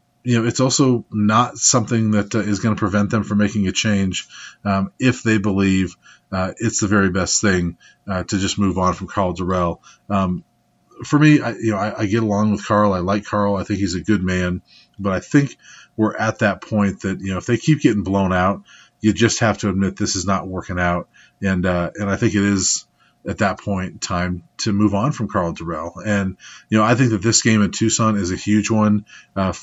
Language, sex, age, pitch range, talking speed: English, male, 30-49, 95-110 Hz, 230 wpm